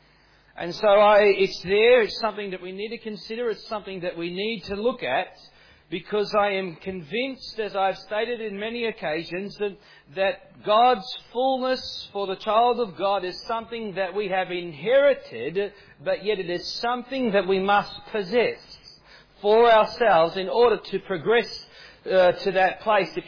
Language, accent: English, Australian